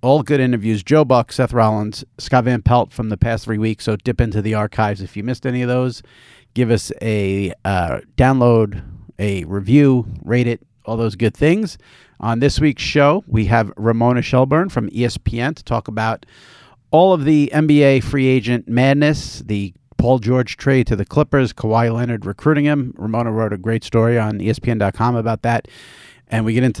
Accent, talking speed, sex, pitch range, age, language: American, 185 wpm, male, 110-135 Hz, 50-69, English